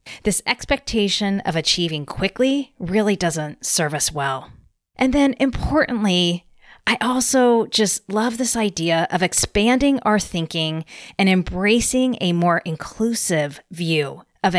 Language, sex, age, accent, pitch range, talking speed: English, female, 30-49, American, 160-225 Hz, 125 wpm